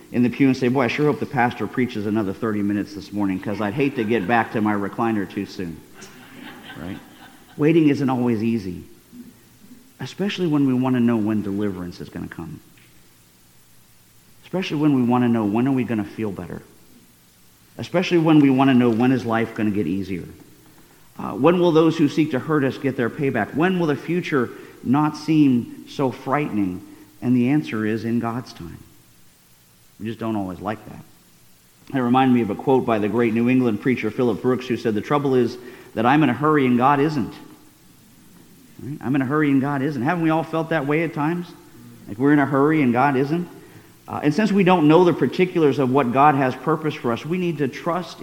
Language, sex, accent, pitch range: English, male, American, 110-155 Hz